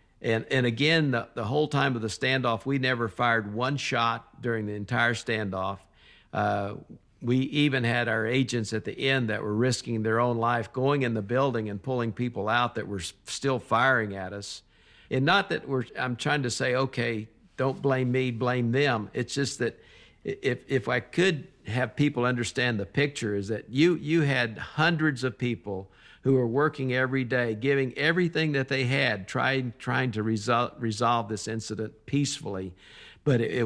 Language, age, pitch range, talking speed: English, 50-69, 110-135 Hz, 185 wpm